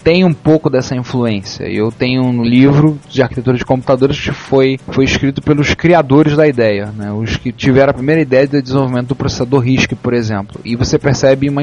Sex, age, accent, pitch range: male, 20-39, Brazilian, 115-145 Hz